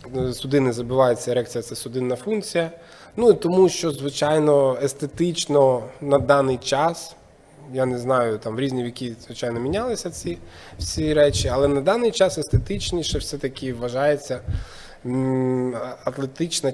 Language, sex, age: Ukrainian, male, 20-39